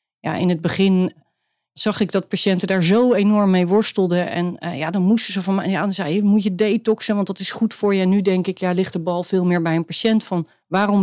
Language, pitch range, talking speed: Dutch, 175-200 Hz, 265 wpm